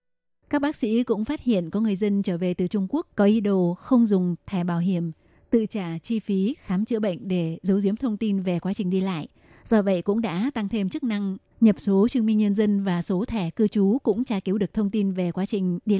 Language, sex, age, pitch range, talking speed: Vietnamese, female, 20-39, 185-220 Hz, 255 wpm